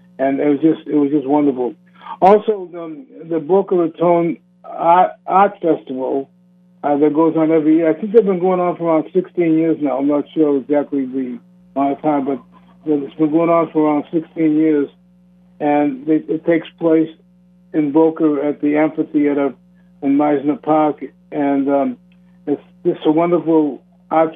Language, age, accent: English, 60-79, American